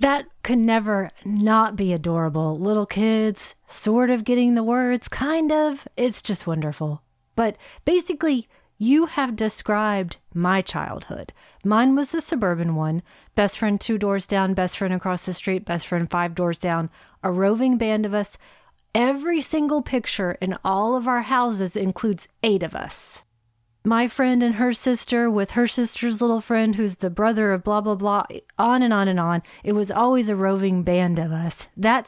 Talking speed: 175 wpm